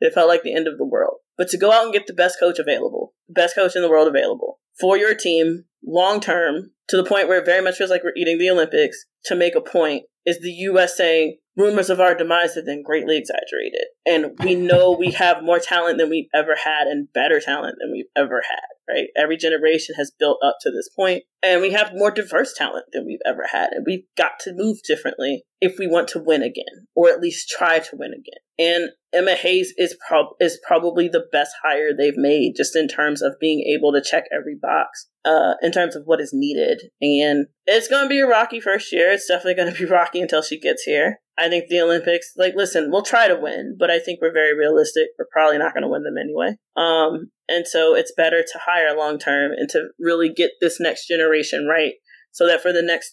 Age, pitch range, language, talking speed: 20-39, 160-200 Hz, English, 230 wpm